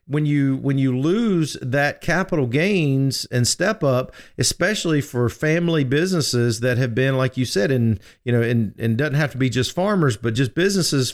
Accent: American